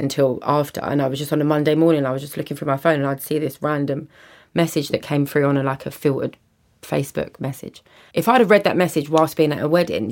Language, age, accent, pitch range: English, 20-39, British, 140-160 Hz